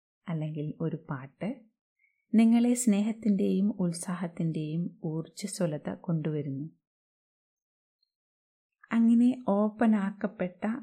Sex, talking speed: female, 60 wpm